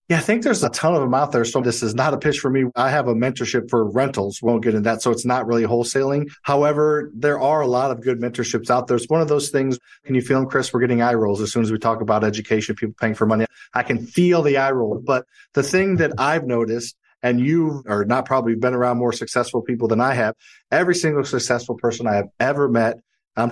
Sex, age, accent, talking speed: male, 40-59, American, 260 wpm